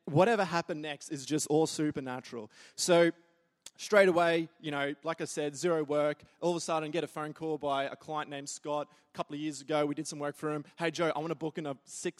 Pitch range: 140-160 Hz